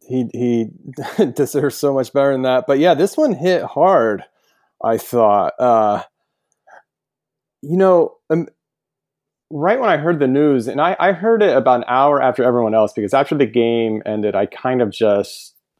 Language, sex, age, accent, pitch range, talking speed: English, male, 30-49, American, 105-145 Hz, 180 wpm